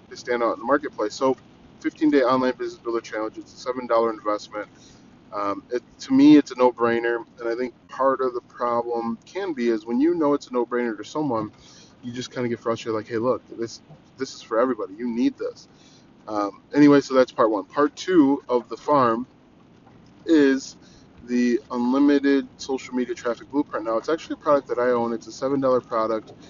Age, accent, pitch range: 20-39, American, 120-145 Hz